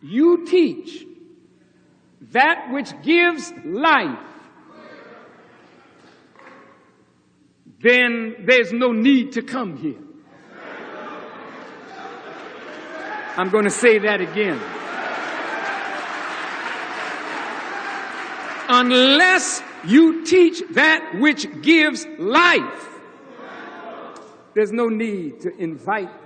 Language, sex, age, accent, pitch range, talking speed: French, male, 60-79, American, 235-325 Hz, 70 wpm